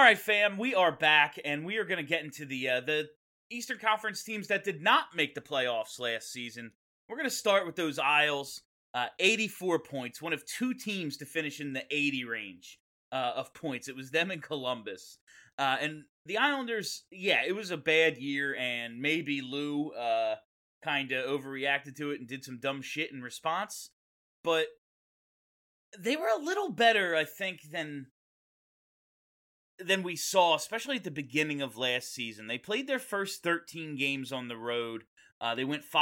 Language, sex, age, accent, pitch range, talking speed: English, male, 30-49, American, 140-205 Hz, 185 wpm